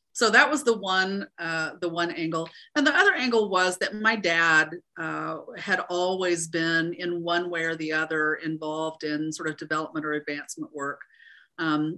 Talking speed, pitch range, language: 180 wpm, 155-210 Hz, English